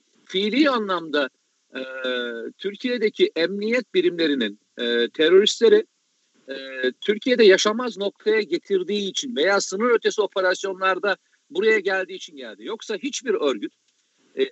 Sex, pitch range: male, 165-265 Hz